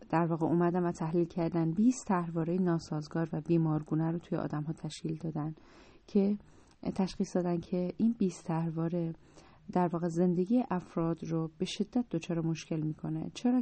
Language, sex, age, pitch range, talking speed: Persian, female, 30-49, 165-195 Hz, 155 wpm